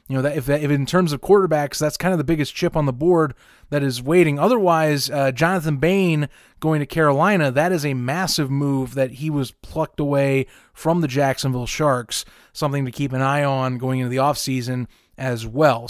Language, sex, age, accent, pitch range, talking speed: English, male, 20-39, American, 135-170 Hz, 200 wpm